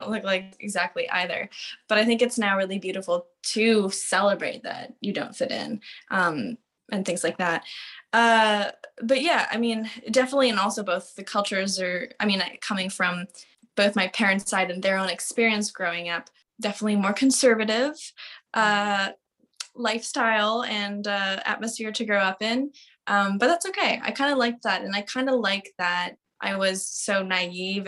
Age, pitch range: 10-29, 185-220 Hz